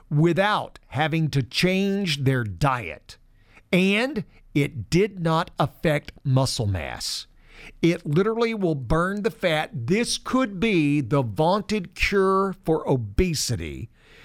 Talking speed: 115 wpm